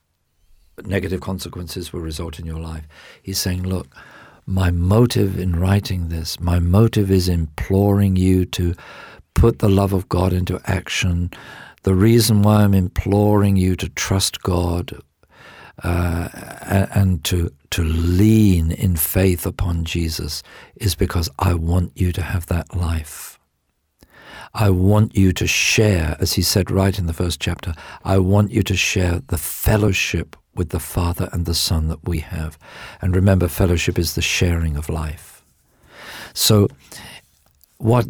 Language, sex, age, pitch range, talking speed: English, male, 50-69, 85-100 Hz, 150 wpm